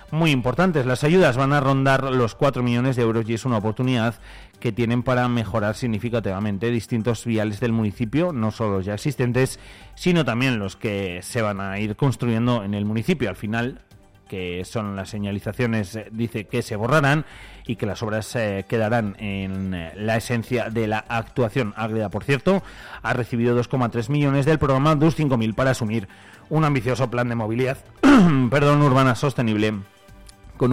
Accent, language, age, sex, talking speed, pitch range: Spanish, Spanish, 30-49, male, 165 wpm, 100-125 Hz